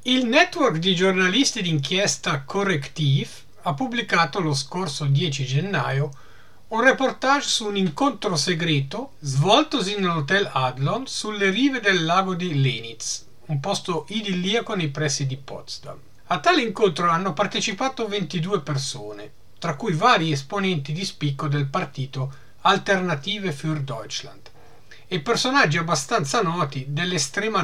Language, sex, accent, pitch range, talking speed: Italian, male, native, 140-200 Hz, 125 wpm